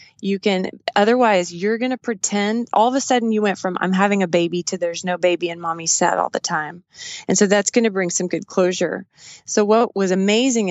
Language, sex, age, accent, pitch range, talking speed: English, female, 20-39, American, 175-215 Hz, 230 wpm